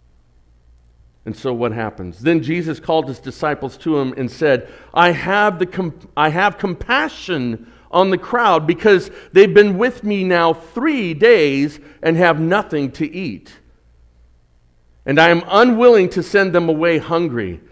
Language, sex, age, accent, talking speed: English, male, 50-69, American, 140 wpm